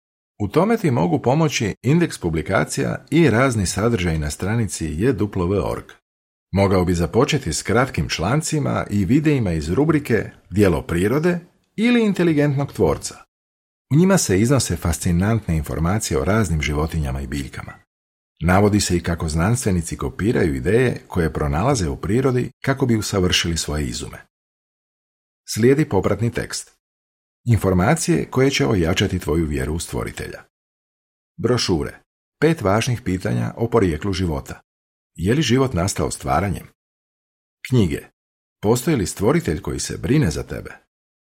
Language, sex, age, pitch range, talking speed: Croatian, male, 50-69, 85-125 Hz, 125 wpm